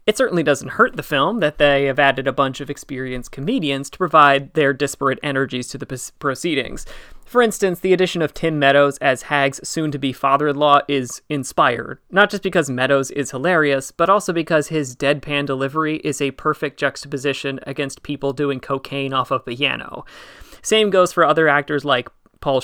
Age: 30-49